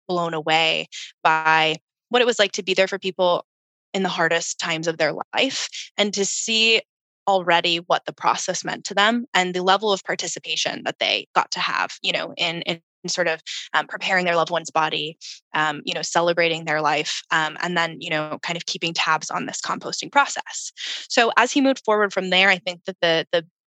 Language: English